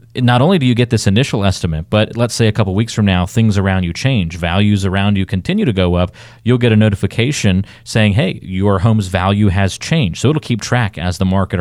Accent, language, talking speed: American, English, 235 wpm